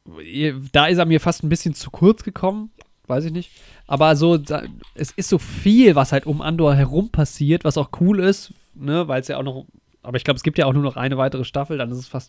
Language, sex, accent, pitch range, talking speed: German, male, German, 125-155 Hz, 250 wpm